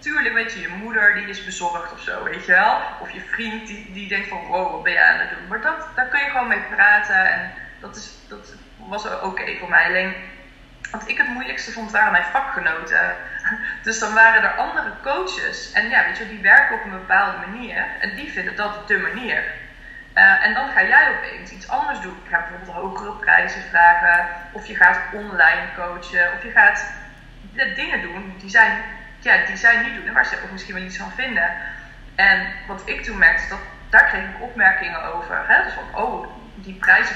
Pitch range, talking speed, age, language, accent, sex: 190-265 Hz, 215 wpm, 20-39, Dutch, Dutch, female